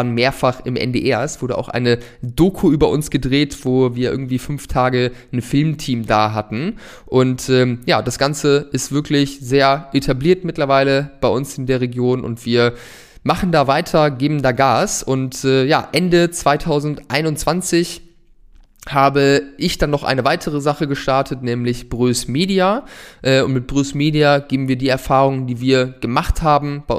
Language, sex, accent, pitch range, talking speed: German, male, German, 120-150 Hz, 160 wpm